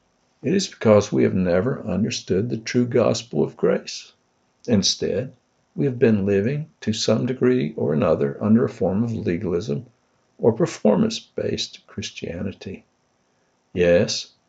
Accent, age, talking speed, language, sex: American, 60-79, 130 wpm, English, male